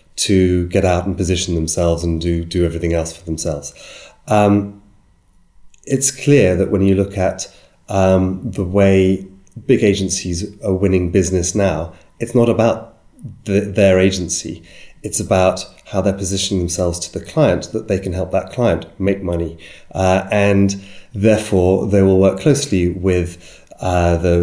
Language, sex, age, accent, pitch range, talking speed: English, male, 30-49, British, 85-100 Hz, 150 wpm